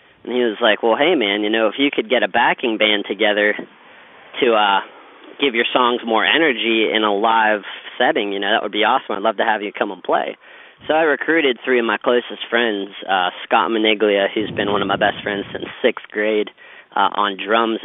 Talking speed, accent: 220 wpm, American